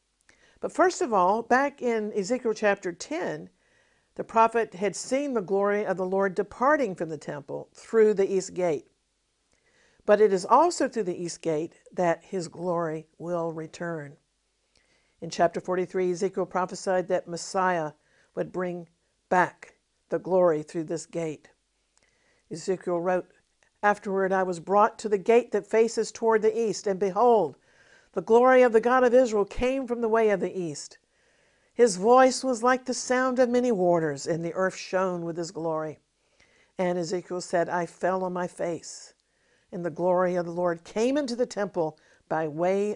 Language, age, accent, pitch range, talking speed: English, 50-69, American, 170-225 Hz, 170 wpm